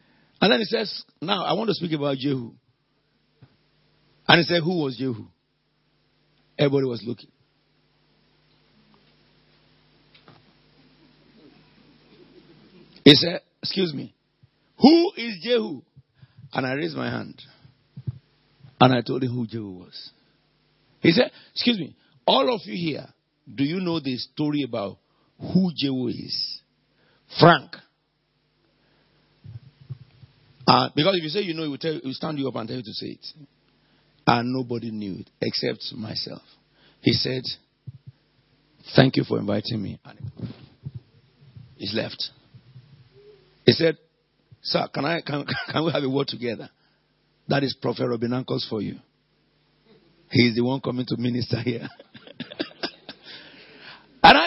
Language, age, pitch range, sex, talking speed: English, 50-69, 125-155 Hz, male, 135 wpm